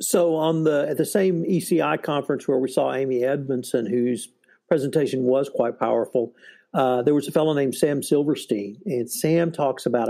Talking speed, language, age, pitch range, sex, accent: 180 wpm, English, 50-69, 125-150 Hz, male, American